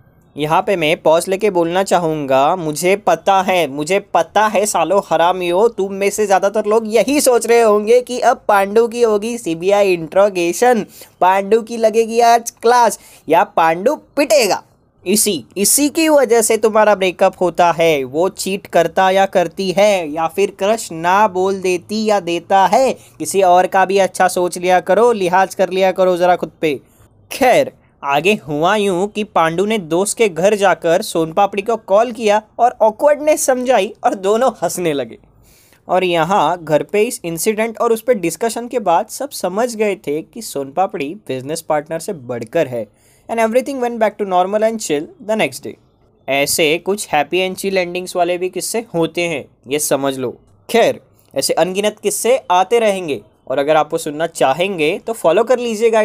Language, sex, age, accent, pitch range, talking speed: Hindi, male, 20-39, native, 170-220 Hz, 180 wpm